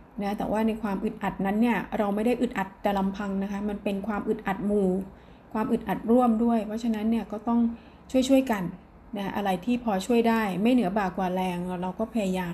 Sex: female